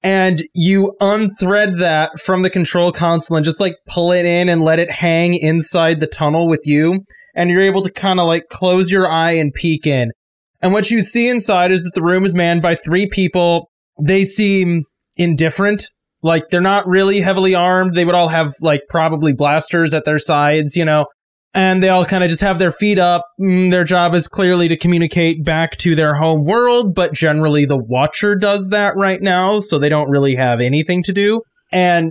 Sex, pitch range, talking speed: male, 150-185 Hz, 205 wpm